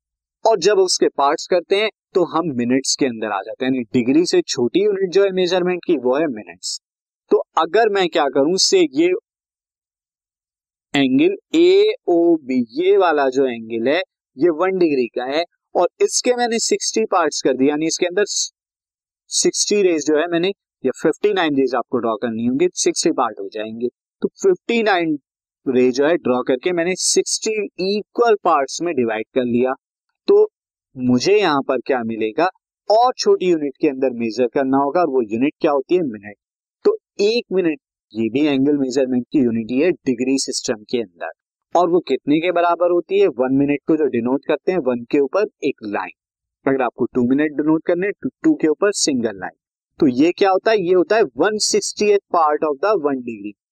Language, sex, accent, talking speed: Hindi, male, native, 185 wpm